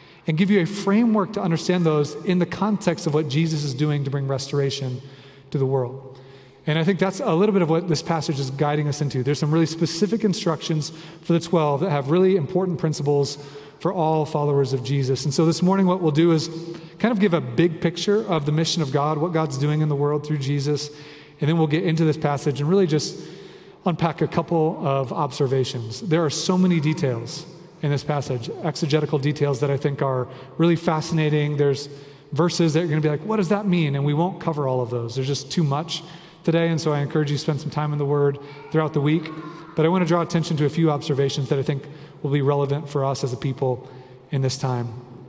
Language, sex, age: English, male, 30-49